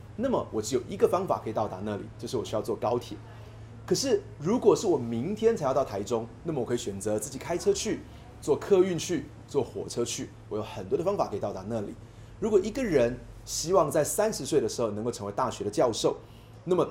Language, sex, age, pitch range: Chinese, male, 30-49, 110-155 Hz